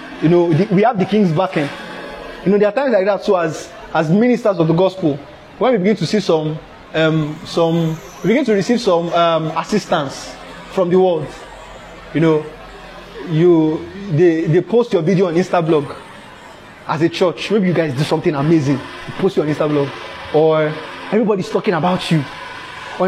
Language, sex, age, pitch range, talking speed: English, male, 20-39, 165-220 Hz, 185 wpm